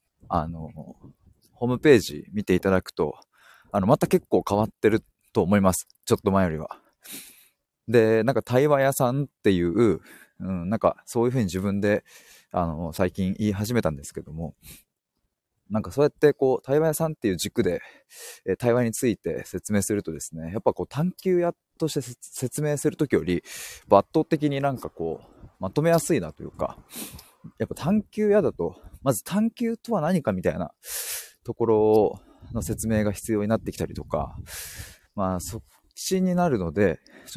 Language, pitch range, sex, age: Japanese, 90-130 Hz, male, 20-39